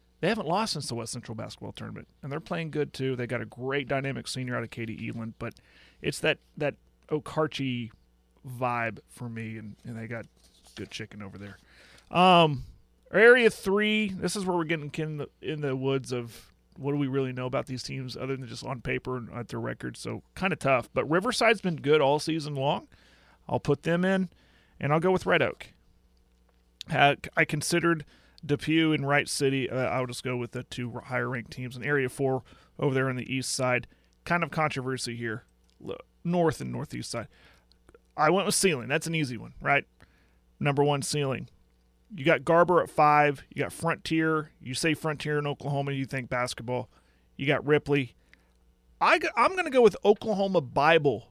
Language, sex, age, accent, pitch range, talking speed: English, male, 30-49, American, 120-160 Hz, 195 wpm